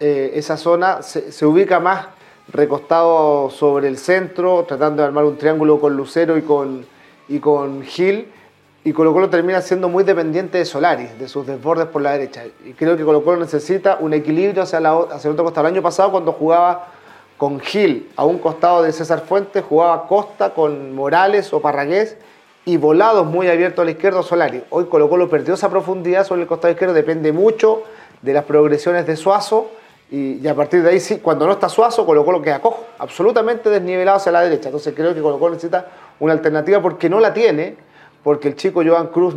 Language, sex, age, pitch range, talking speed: Spanish, male, 30-49, 150-185 Hz, 205 wpm